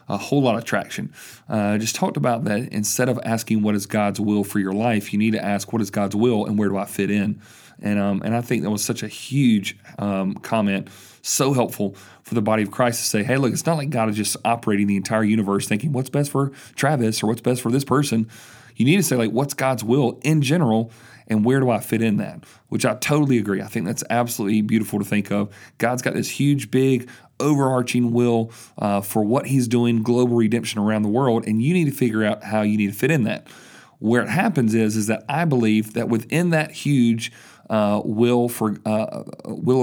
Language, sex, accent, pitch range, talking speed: English, male, American, 110-130 Hz, 230 wpm